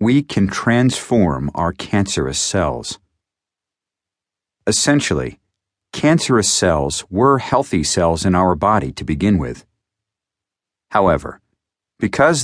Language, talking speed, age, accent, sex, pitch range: English, 95 wpm, 50-69, American, male, 85-105 Hz